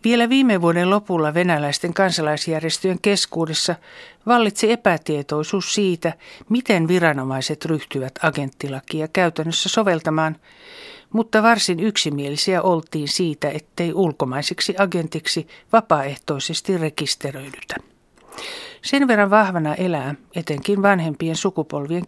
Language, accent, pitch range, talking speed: Finnish, native, 145-190 Hz, 90 wpm